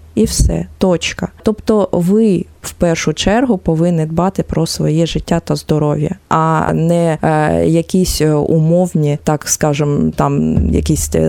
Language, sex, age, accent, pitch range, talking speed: Ukrainian, female, 20-39, native, 150-175 Hz, 130 wpm